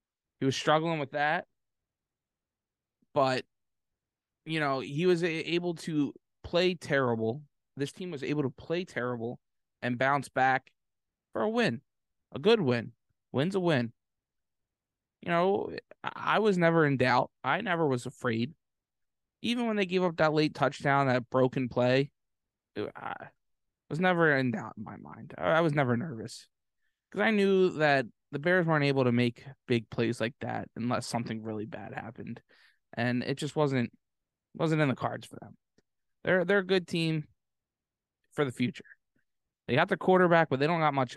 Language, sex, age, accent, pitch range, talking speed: English, male, 20-39, American, 125-160 Hz, 165 wpm